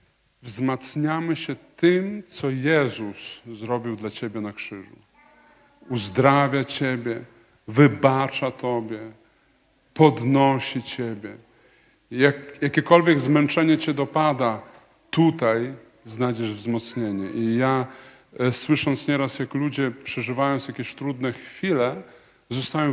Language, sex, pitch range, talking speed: Polish, male, 120-150 Hz, 90 wpm